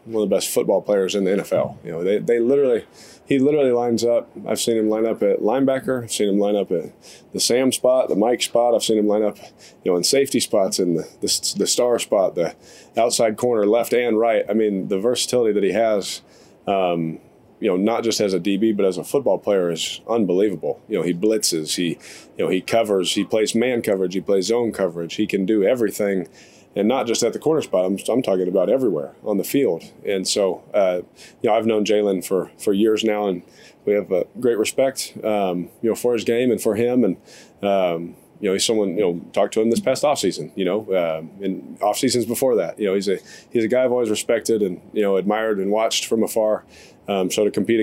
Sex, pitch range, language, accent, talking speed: male, 100-120 Hz, English, American, 235 wpm